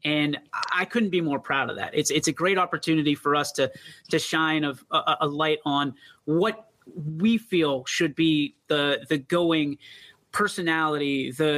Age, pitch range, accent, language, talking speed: 30-49, 150-180 Hz, American, English, 170 wpm